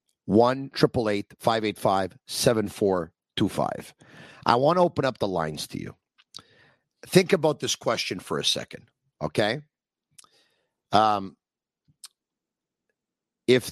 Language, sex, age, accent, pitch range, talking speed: English, male, 50-69, American, 105-135 Hz, 90 wpm